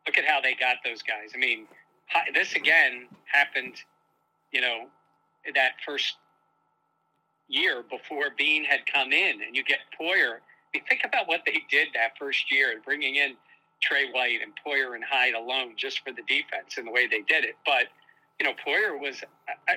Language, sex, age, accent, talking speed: English, male, 50-69, American, 175 wpm